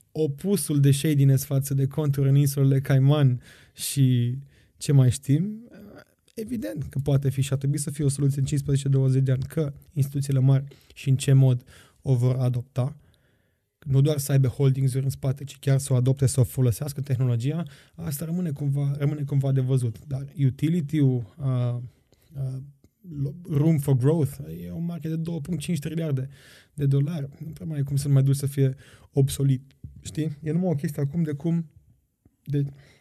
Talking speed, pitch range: 170 wpm, 125-140 Hz